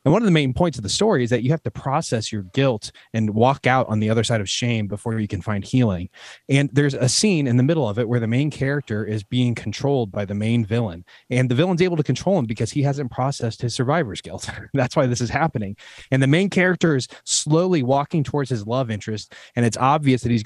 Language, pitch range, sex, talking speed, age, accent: English, 120-170 Hz, male, 250 wpm, 20-39, American